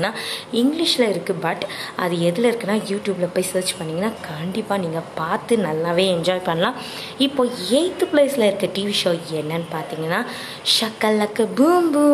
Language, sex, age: Tamil, female, 20-39